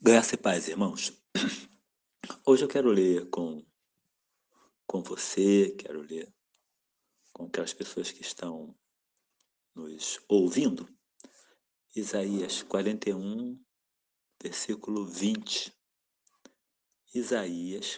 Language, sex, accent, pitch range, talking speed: Portuguese, male, Brazilian, 100-150 Hz, 80 wpm